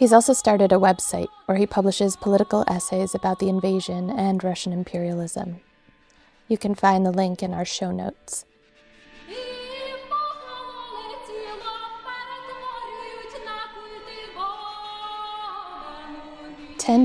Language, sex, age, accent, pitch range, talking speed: English, female, 20-39, American, 180-220 Hz, 90 wpm